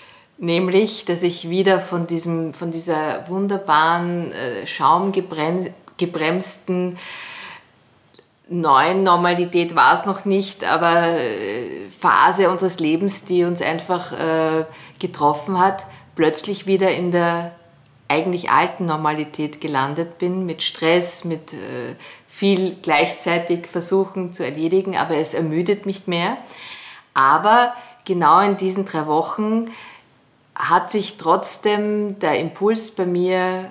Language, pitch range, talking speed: German, 165-195 Hz, 110 wpm